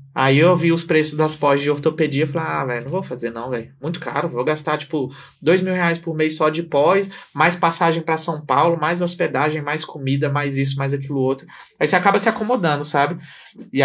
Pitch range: 135-165 Hz